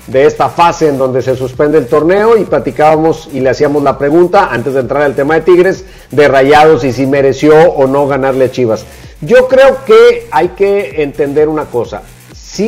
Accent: Mexican